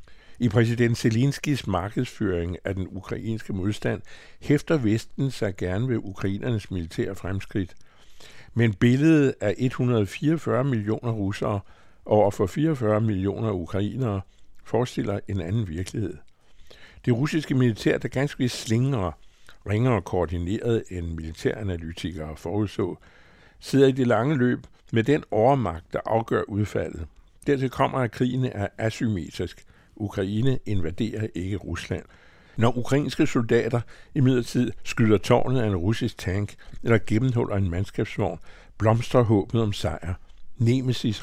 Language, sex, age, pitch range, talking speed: Danish, male, 60-79, 95-120 Hz, 120 wpm